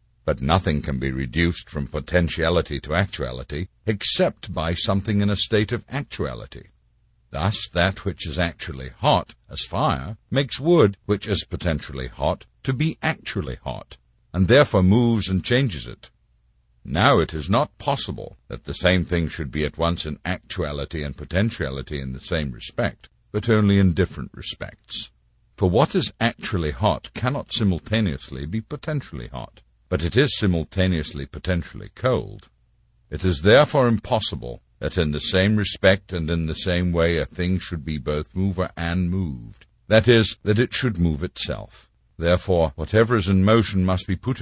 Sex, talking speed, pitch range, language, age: male, 160 wpm, 75-105 Hz, English, 60-79